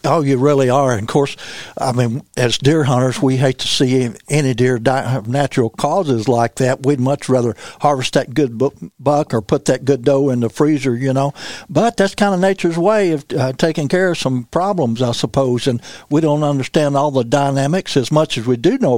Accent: American